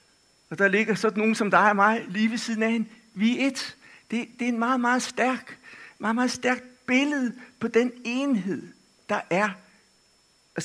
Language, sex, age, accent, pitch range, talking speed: Danish, male, 60-79, native, 170-235 Hz, 190 wpm